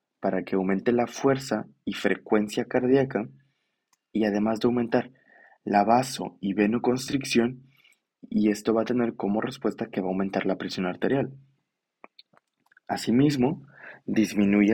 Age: 20-39